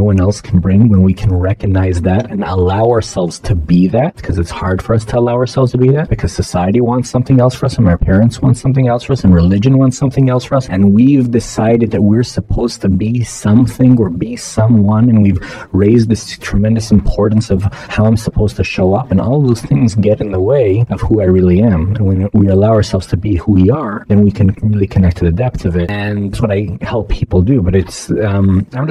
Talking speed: 245 wpm